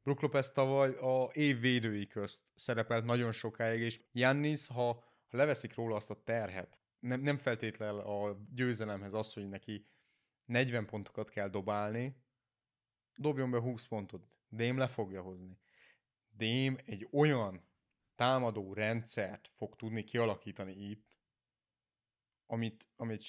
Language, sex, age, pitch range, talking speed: Hungarian, male, 30-49, 105-125 Hz, 125 wpm